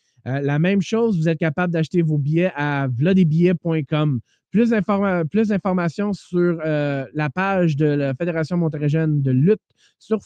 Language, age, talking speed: French, 20-39, 160 wpm